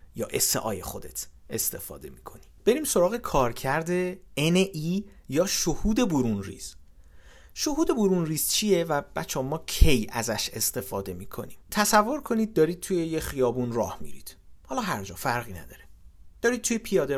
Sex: male